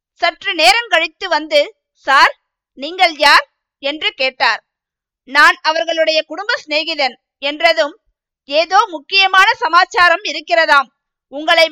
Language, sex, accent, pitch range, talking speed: Tamil, female, native, 295-370 Hz, 95 wpm